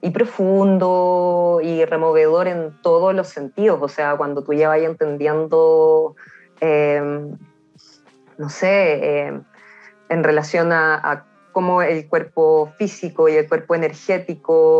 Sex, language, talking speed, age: female, Spanish, 125 wpm, 20-39